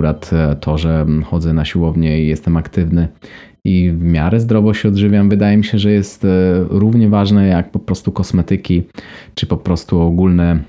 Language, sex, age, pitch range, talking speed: Polish, male, 20-39, 85-100 Hz, 165 wpm